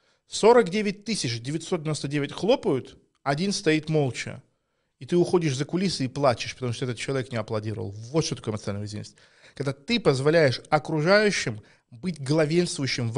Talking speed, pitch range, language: 140 wpm, 120-155 Hz, Russian